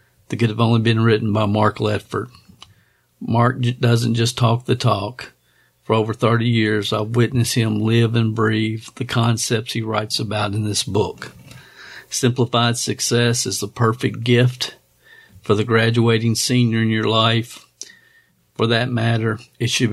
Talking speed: 155 wpm